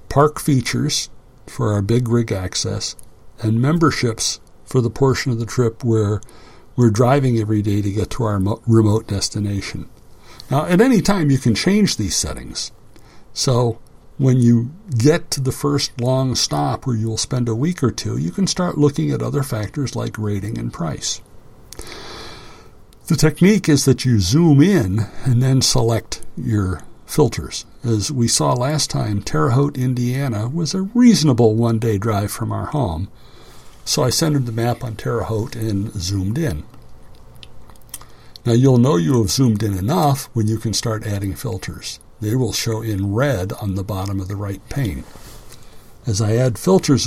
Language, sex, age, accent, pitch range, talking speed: English, male, 60-79, American, 110-135 Hz, 165 wpm